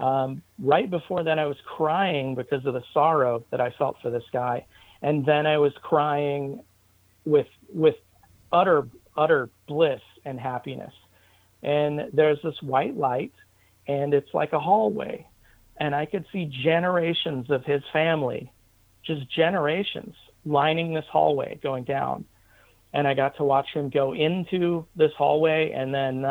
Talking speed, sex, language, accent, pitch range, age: 150 wpm, male, English, American, 120-150 Hz, 40-59